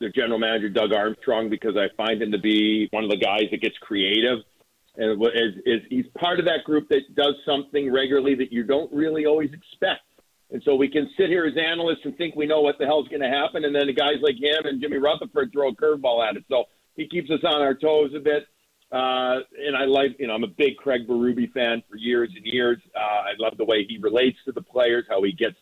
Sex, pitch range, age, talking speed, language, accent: male, 130-165 Hz, 50-69, 250 wpm, English, American